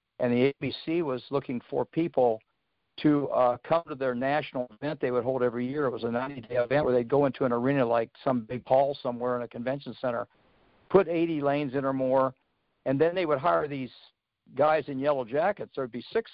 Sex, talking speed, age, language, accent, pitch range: male, 215 wpm, 60-79, English, American, 125-155 Hz